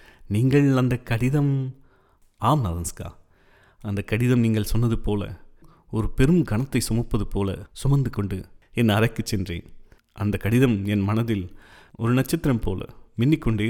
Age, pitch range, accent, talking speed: 30-49, 95-120 Hz, native, 120 wpm